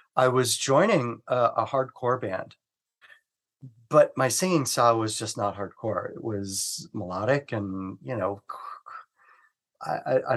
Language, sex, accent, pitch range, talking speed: English, male, American, 105-130 Hz, 135 wpm